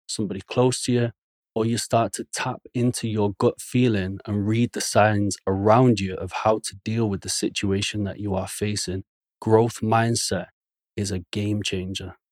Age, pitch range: 30-49, 100-120 Hz